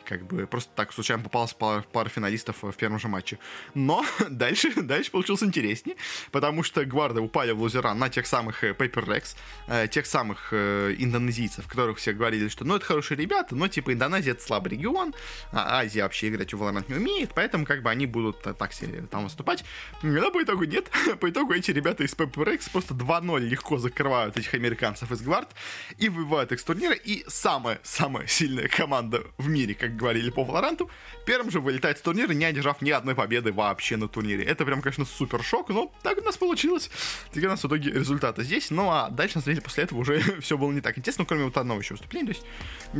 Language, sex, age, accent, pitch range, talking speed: Russian, male, 20-39, native, 115-155 Hz, 200 wpm